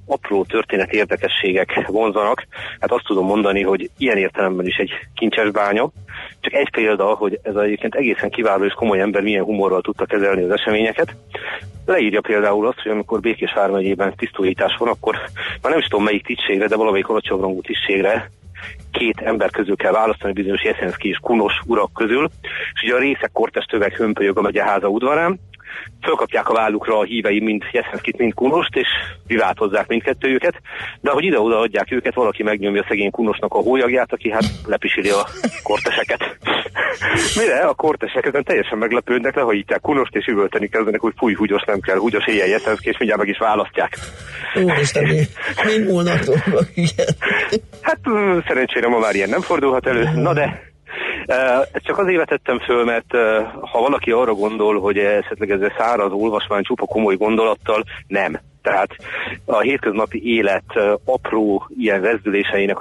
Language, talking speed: Hungarian, 155 wpm